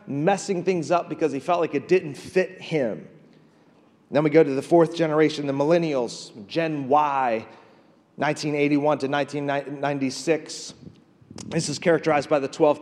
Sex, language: male, English